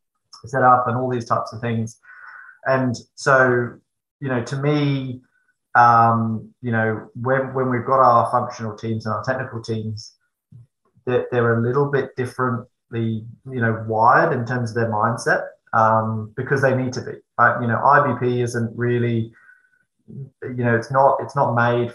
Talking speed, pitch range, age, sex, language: 165 wpm, 115-125 Hz, 20-39, male, English